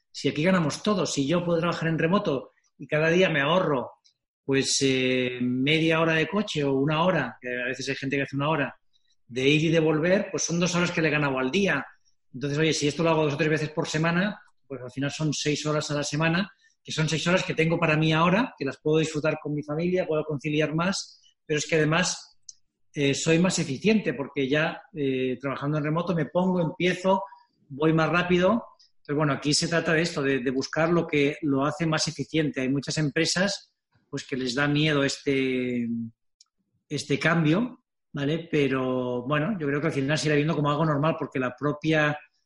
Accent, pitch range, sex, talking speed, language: Spanish, 135-160 Hz, male, 215 wpm, Spanish